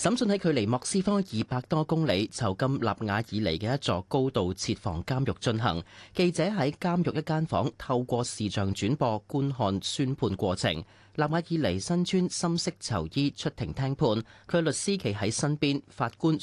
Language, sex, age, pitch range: Chinese, male, 30-49, 100-145 Hz